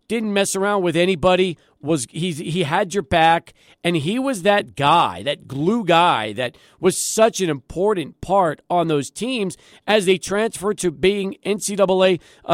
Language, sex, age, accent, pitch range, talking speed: English, male, 40-59, American, 160-205 Hz, 165 wpm